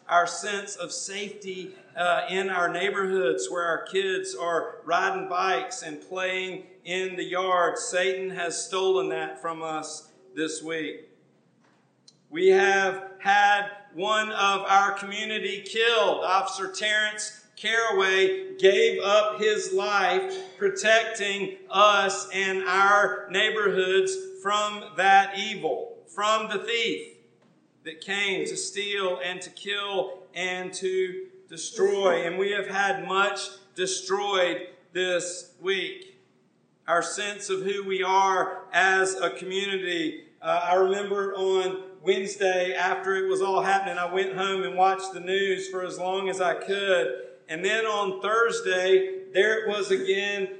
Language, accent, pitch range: English, American, 185-215 Hz